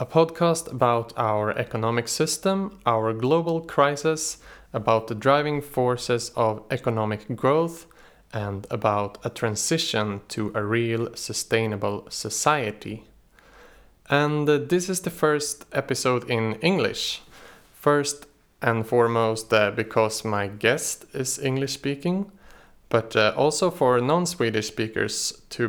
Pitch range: 110-150 Hz